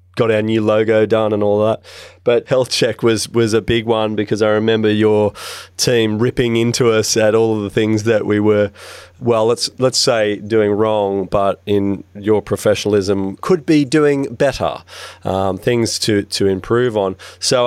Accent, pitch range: Australian, 100-125 Hz